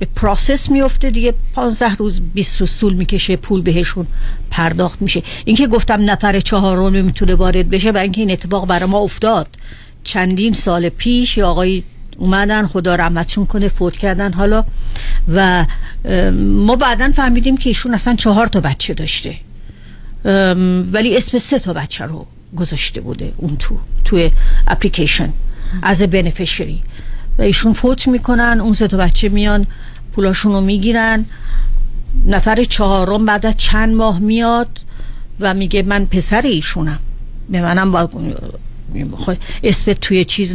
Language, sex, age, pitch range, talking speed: Persian, female, 50-69, 180-220 Hz, 135 wpm